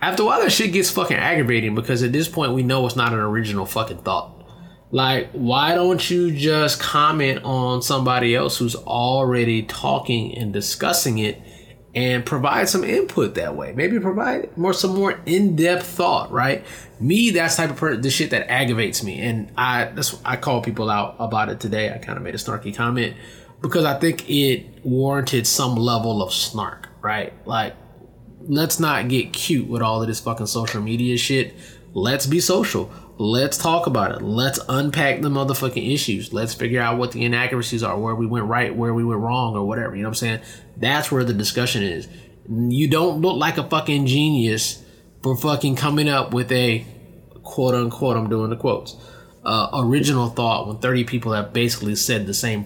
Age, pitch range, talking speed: 20-39, 115-145 Hz, 190 wpm